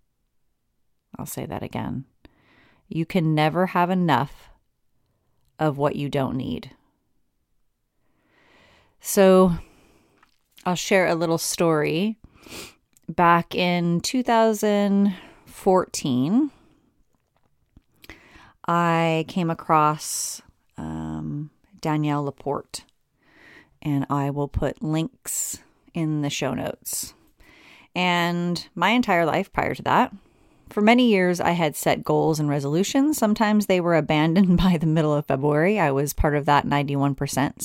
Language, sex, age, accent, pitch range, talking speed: English, female, 30-49, American, 145-200 Hz, 110 wpm